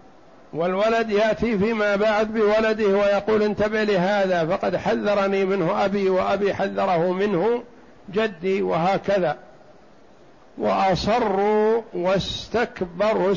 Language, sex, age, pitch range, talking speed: Arabic, male, 60-79, 190-220 Hz, 85 wpm